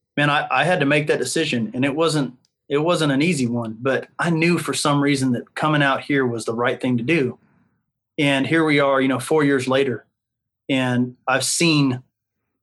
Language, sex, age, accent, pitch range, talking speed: English, male, 30-49, American, 120-140 Hz, 210 wpm